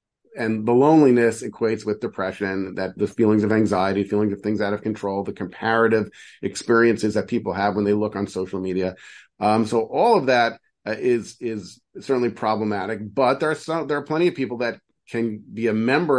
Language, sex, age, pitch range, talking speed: English, male, 40-59, 105-125 Hz, 195 wpm